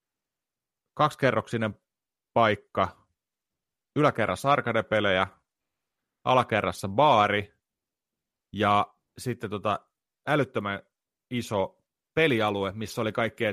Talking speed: 65 wpm